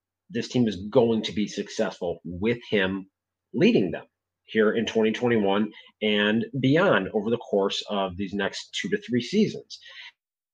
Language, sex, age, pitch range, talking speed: English, male, 30-49, 105-135 Hz, 155 wpm